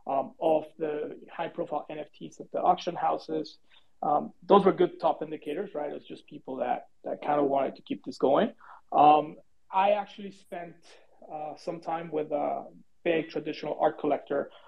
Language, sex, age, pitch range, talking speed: English, male, 30-49, 150-185 Hz, 170 wpm